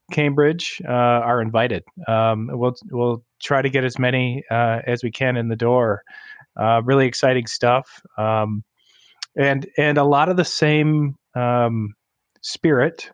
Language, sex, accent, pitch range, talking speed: English, male, American, 120-145 Hz, 150 wpm